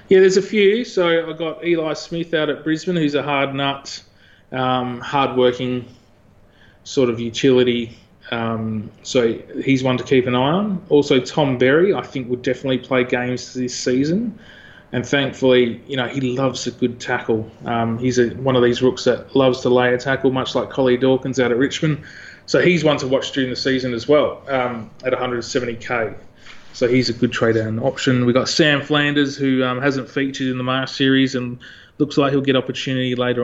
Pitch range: 120-135 Hz